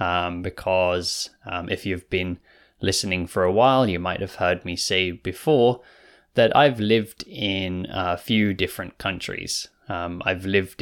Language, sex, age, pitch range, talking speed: English, male, 20-39, 90-115 Hz, 155 wpm